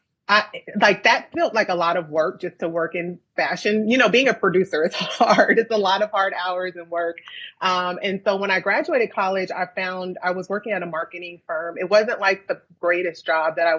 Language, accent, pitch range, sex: English, American, 170-205 Hz, female